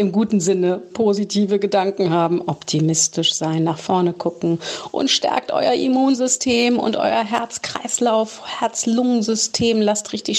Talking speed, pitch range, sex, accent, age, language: 125 wpm, 170-205 Hz, female, German, 40-59, German